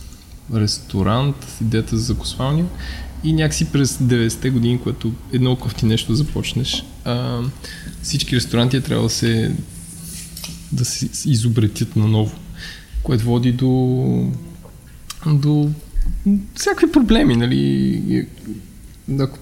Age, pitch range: 20-39, 105-140 Hz